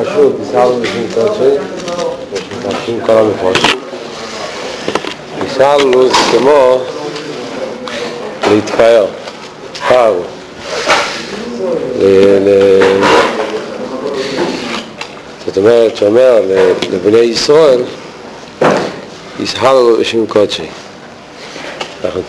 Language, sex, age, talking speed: Hebrew, male, 50-69, 45 wpm